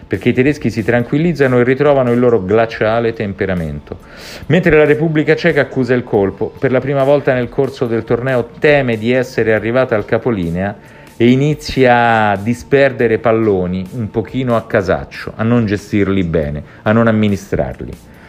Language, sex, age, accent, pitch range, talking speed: Italian, male, 40-59, native, 100-135 Hz, 160 wpm